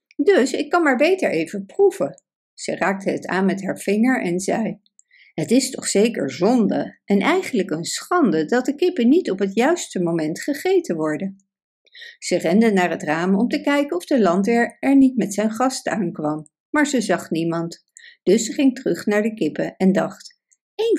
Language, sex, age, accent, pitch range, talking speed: Dutch, female, 60-79, Dutch, 185-290 Hz, 190 wpm